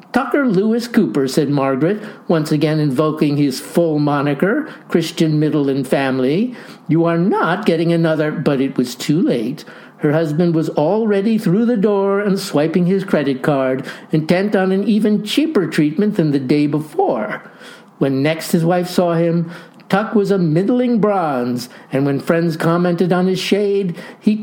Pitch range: 160-220 Hz